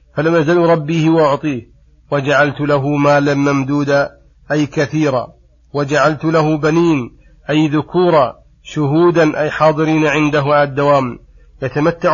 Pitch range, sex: 145-160 Hz, male